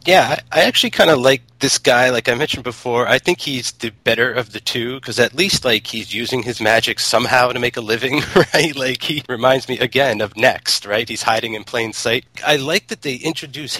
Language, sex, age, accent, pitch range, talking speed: English, male, 30-49, American, 110-135 Hz, 225 wpm